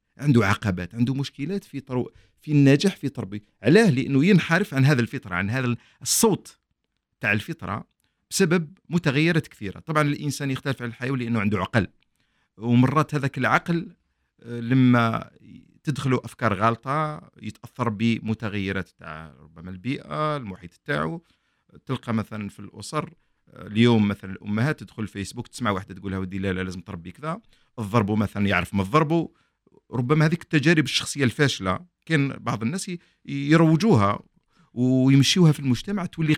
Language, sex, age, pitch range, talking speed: Arabic, male, 50-69, 105-150 Hz, 135 wpm